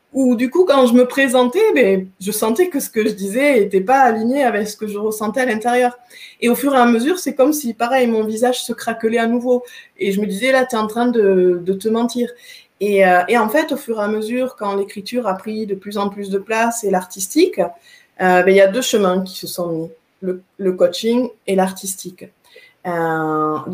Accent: French